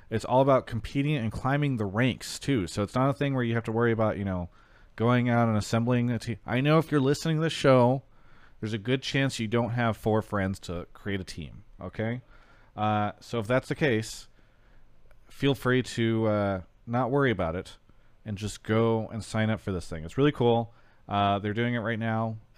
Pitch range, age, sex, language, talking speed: 100-120 Hz, 30-49, male, English, 220 wpm